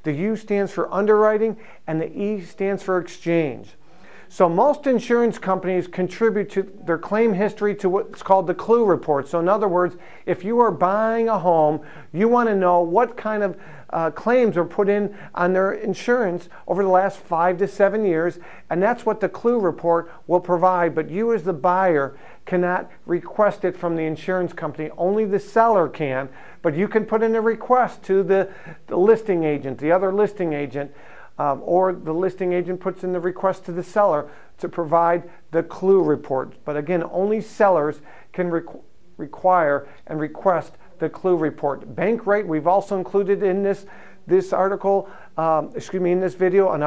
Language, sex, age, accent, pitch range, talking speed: English, male, 50-69, American, 170-200 Hz, 180 wpm